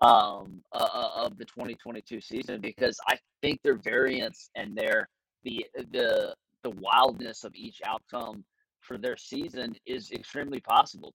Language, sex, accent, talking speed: English, male, American, 140 wpm